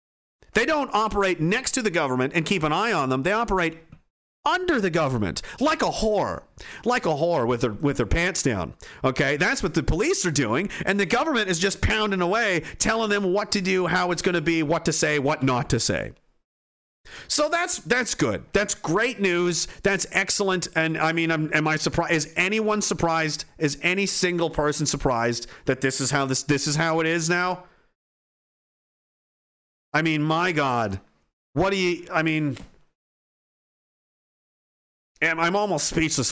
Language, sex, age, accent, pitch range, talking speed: English, male, 40-59, American, 130-180 Hz, 180 wpm